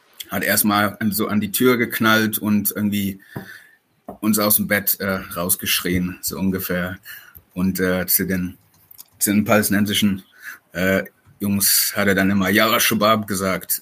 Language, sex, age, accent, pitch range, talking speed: German, male, 30-49, German, 95-110 Hz, 140 wpm